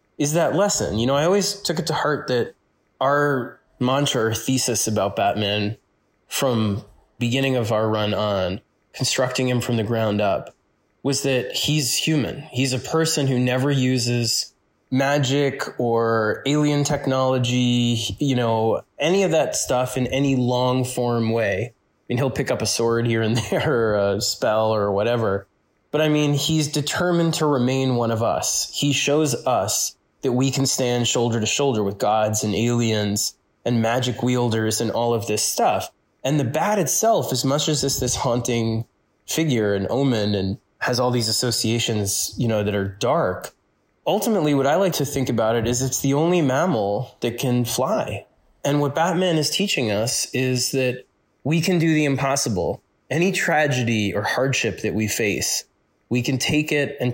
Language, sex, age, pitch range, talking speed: English, male, 20-39, 110-140 Hz, 175 wpm